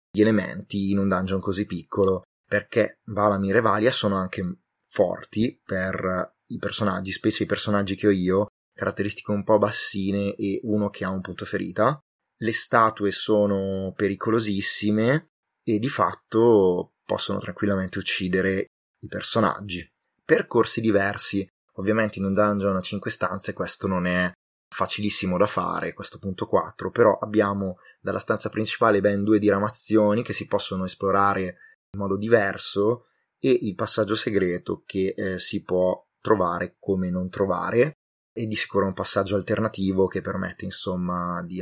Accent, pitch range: native, 95-105 Hz